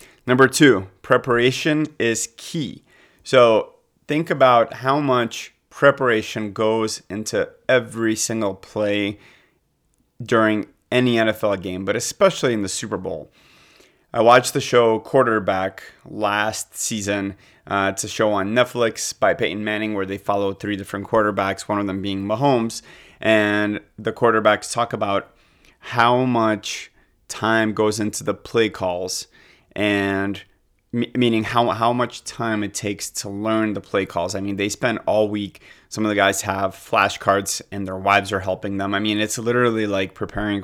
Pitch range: 100-115 Hz